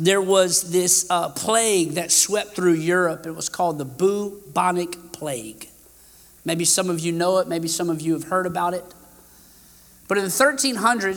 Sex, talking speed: male, 170 wpm